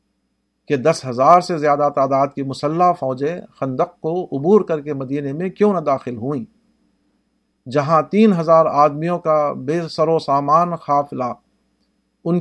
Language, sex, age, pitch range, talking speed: Urdu, male, 50-69, 130-170 Hz, 150 wpm